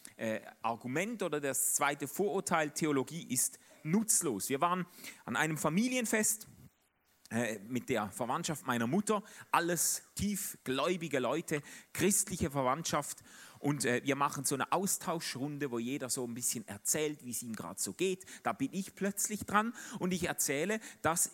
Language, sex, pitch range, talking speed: German, male, 135-195 Hz, 150 wpm